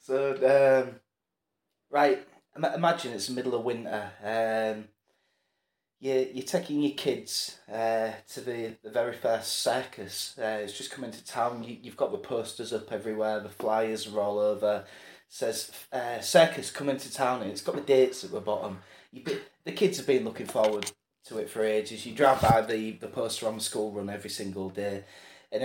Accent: British